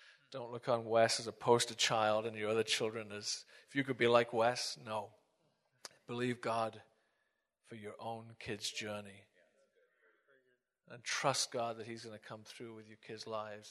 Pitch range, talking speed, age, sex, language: 110-125 Hz, 170 wpm, 40-59, male, English